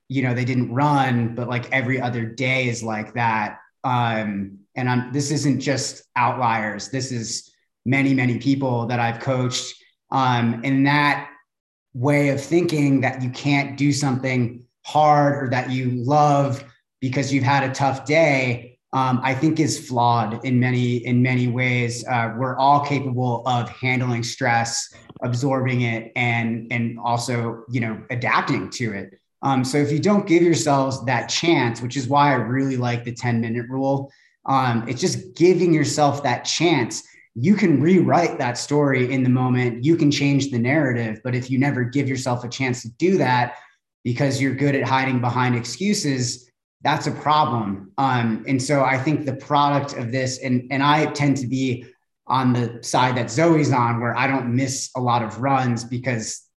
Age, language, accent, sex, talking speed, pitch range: 30-49, English, American, male, 175 wpm, 120-140 Hz